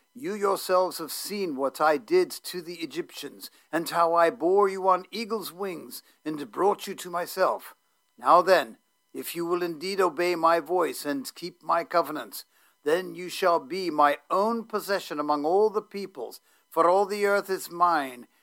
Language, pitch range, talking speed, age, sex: English, 165-205 Hz, 175 wpm, 50-69, male